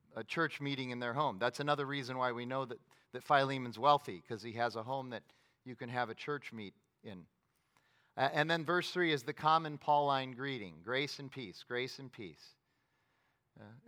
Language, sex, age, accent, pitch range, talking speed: English, male, 40-59, American, 125-155 Hz, 200 wpm